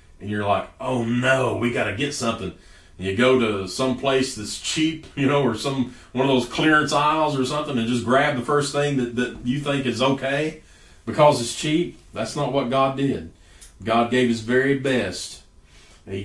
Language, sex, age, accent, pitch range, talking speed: English, male, 40-59, American, 110-155 Hz, 205 wpm